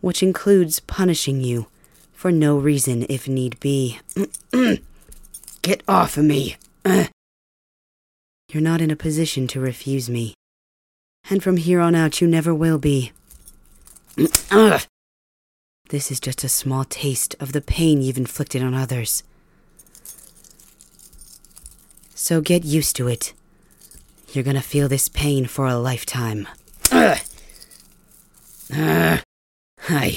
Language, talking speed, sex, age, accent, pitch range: English, 120 wpm, female, 30-49, American, 120-170 Hz